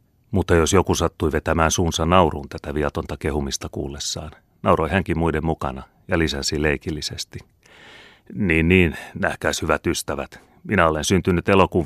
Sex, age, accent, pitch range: male, 40-59, native, 75-90 Hz